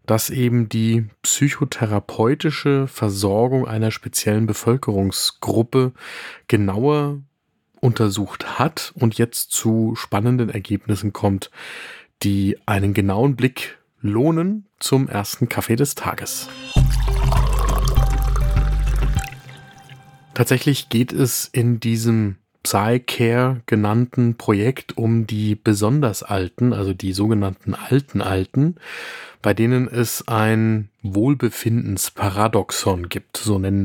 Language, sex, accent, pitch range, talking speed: German, male, German, 105-130 Hz, 90 wpm